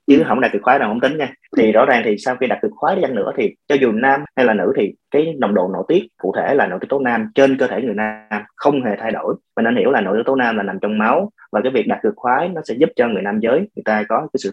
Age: 30-49